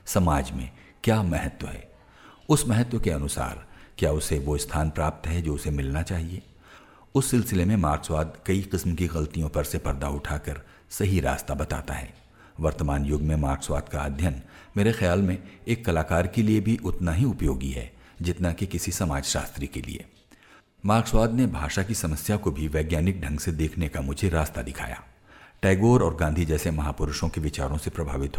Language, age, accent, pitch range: Hindi, 60-79, native, 75-95 Hz